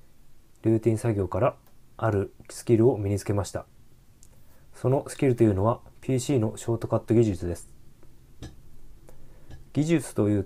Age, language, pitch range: 20-39, Japanese, 105-125 Hz